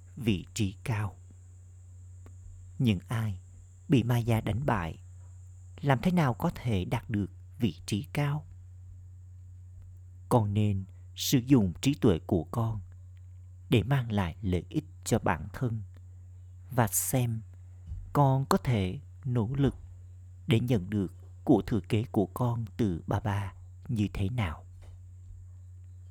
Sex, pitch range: male, 90-115 Hz